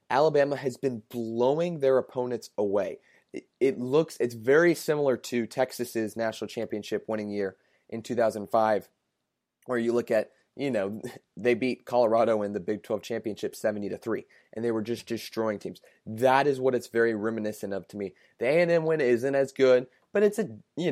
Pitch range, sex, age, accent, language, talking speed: 105-135 Hz, male, 20-39, American, English, 190 wpm